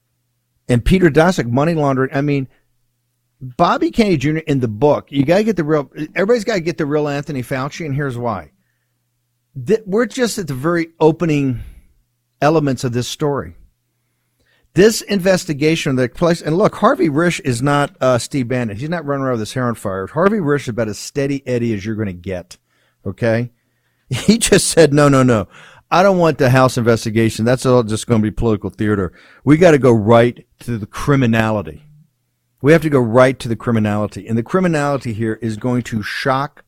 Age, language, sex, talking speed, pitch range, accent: 50-69, English, male, 195 wpm, 115-145 Hz, American